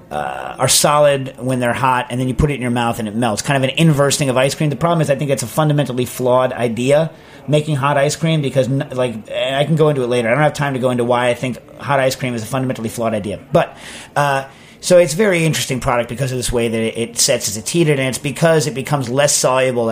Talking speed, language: 275 wpm, English